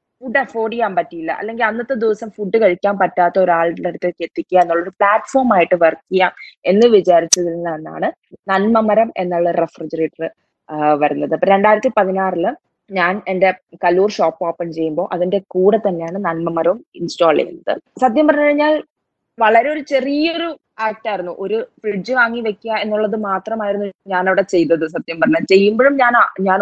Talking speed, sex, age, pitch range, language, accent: 130 wpm, female, 20-39, 180-230 Hz, Malayalam, native